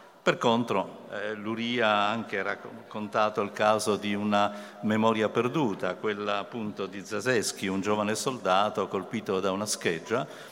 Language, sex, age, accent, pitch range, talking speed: Italian, male, 50-69, native, 95-120 Hz, 135 wpm